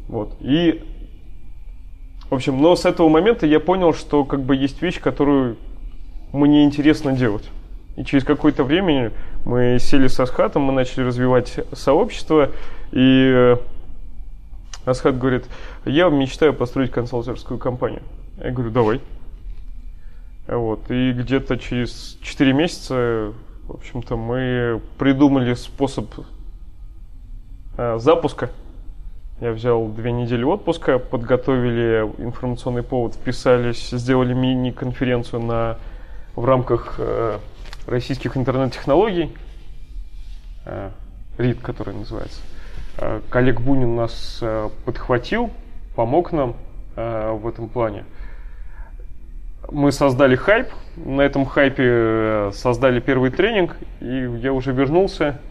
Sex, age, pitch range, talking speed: male, 20-39, 110-135 Hz, 105 wpm